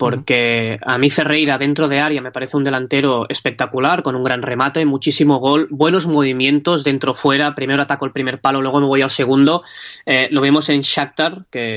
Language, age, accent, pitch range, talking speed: Spanish, 20-39, Spanish, 130-150 Hz, 195 wpm